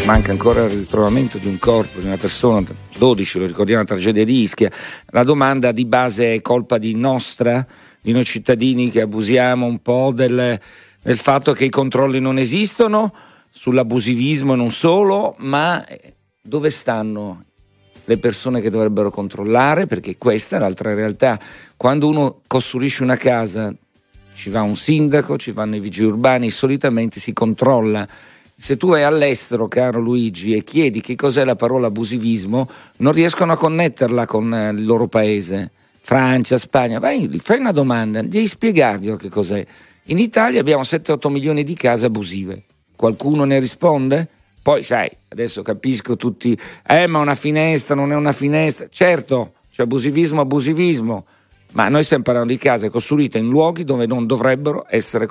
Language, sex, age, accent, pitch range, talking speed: Italian, male, 50-69, native, 110-140 Hz, 155 wpm